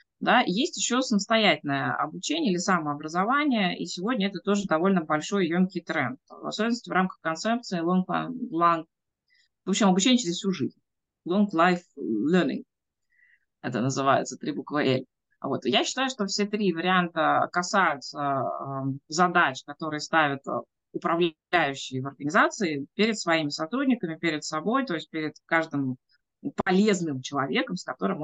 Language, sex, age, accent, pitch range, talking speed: Russian, female, 20-39, native, 160-195 Hz, 135 wpm